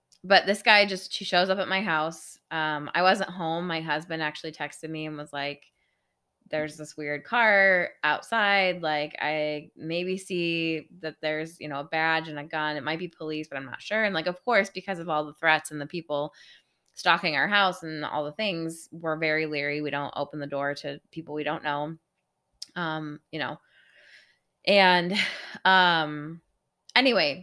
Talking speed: 190 wpm